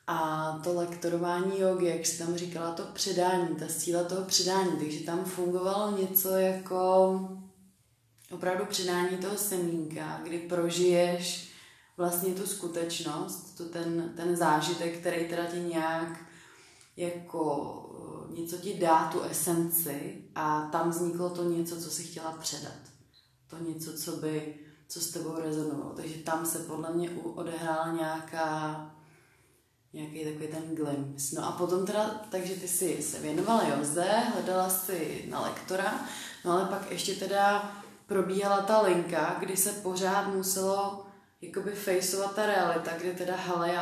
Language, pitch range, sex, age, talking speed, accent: Czech, 165-185 Hz, female, 20-39, 140 wpm, native